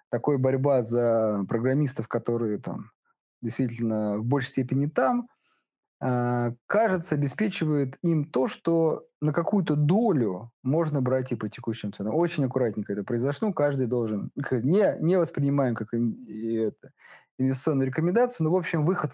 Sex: male